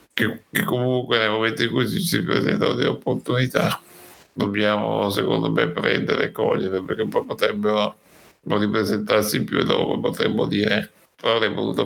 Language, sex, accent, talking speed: Italian, male, native, 165 wpm